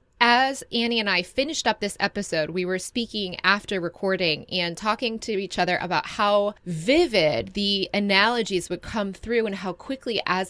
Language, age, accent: English, 20-39, American